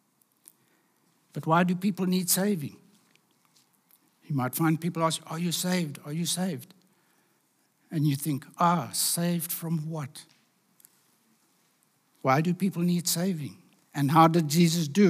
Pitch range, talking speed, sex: 150-185 Hz, 135 wpm, male